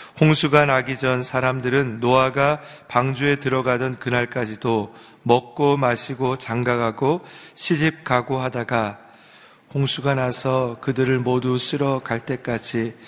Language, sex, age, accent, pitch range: Korean, male, 40-59, native, 120-140 Hz